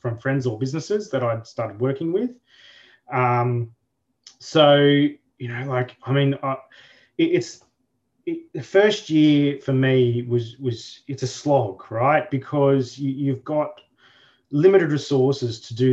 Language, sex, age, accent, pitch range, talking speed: English, male, 20-39, Australian, 120-135 Hz, 145 wpm